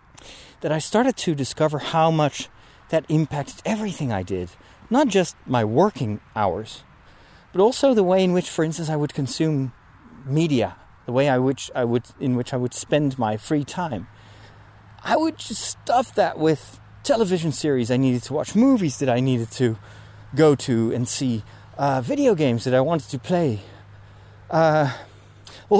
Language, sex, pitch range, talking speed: English, male, 105-160 Hz, 170 wpm